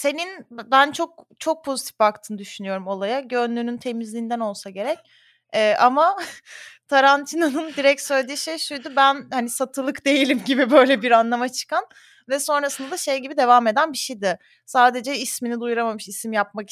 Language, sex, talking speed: Turkish, female, 145 wpm